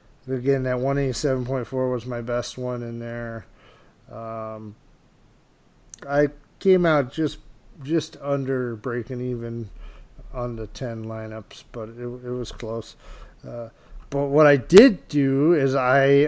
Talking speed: 130 wpm